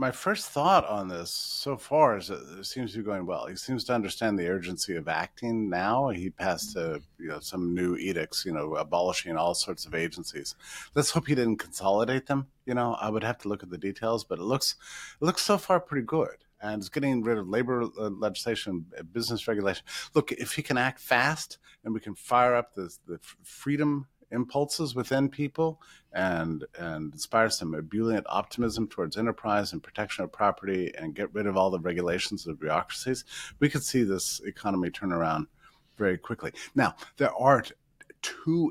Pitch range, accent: 100-130 Hz, American